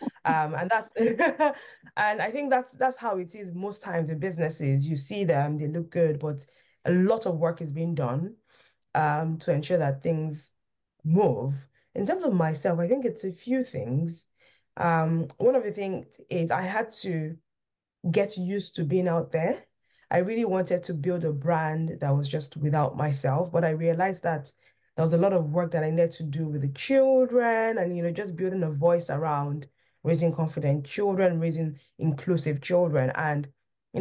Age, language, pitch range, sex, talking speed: 20-39, English, 155-195 Hz, female, 185 wpm